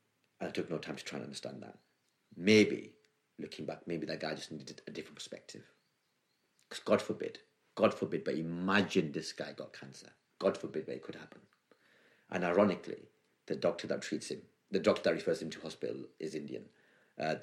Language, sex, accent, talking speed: English, male, British, 185 wpm